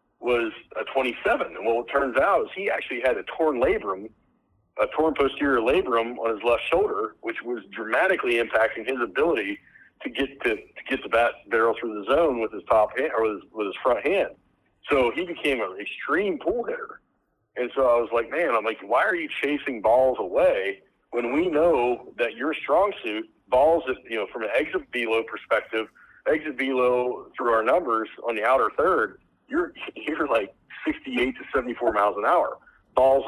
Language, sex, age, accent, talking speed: English, male, 50-69, American, 190 wpm